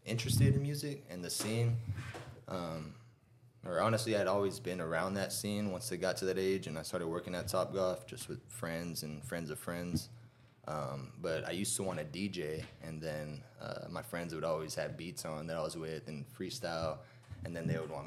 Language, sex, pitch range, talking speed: English, male, 85-120 Hz, 215 wpm